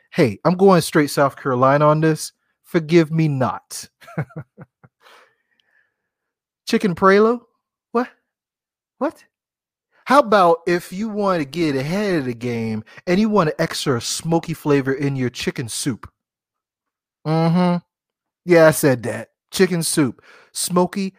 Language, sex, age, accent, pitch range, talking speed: English, male, 30-49, American, 130-180 Hz, 130 wpm